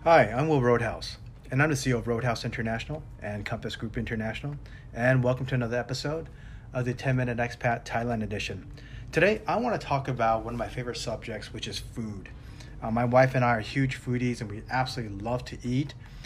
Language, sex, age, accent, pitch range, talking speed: English, male, 30-49, American, 115-135 Hz, 200 wpm